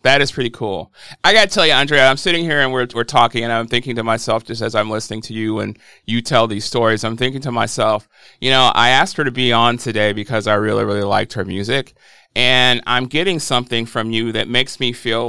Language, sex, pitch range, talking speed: English, male, 120-150 Hz, 245 wpm